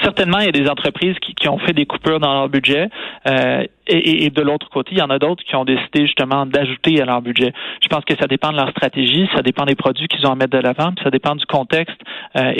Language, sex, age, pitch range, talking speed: French, male, 30-49, 130-155 Hz, 270 wpm